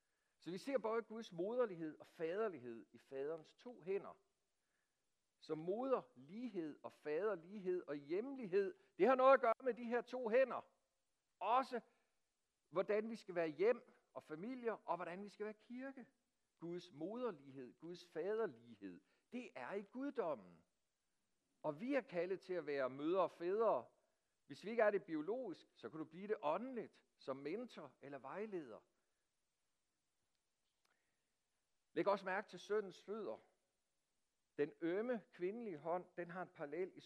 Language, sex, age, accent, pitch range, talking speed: Danish, male, 60-79, native, 155-235 Hz, 145 wpm